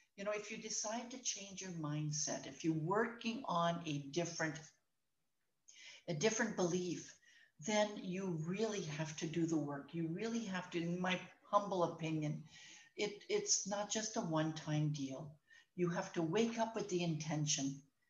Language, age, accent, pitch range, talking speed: English, 60-79, American, 150-205 Hz, 165 wpm